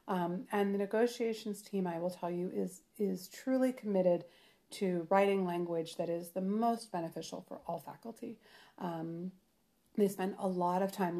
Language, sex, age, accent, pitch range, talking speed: English, female, 40-59, American, 175-210 Hz, 165 wpm